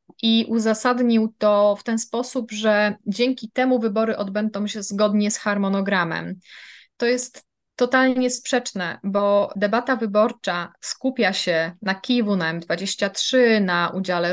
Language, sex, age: Polish, female, 20-39